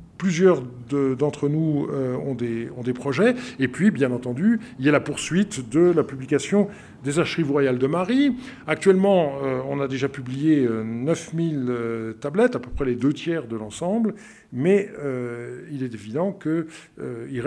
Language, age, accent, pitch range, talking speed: French, 50-69, French, 135-185 Hz, 160 wpm